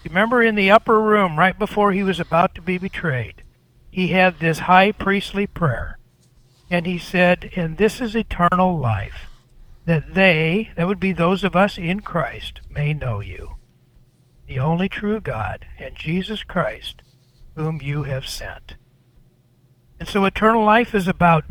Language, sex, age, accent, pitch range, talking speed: English, male, 60-79, American, 140-200 Hz, 160 wpm